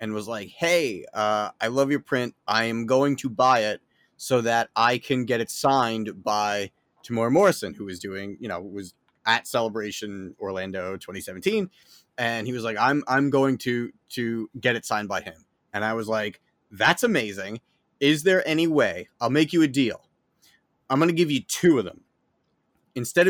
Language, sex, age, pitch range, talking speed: English, male, 30-49, 110-140 Hz, 185 wpm